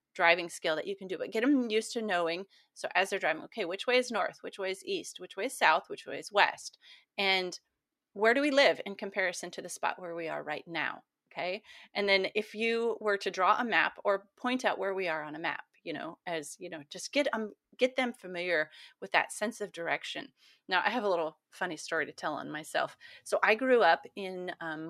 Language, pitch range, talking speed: English, 175-225 Hz, 240 wpm